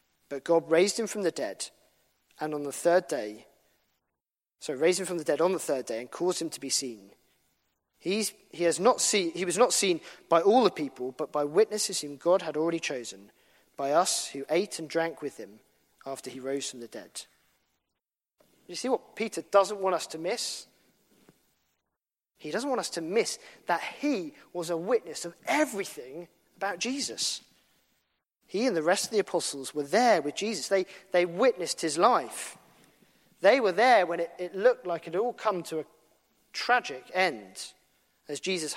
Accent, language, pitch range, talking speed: British, English, 140-200 Hz, 185 wpm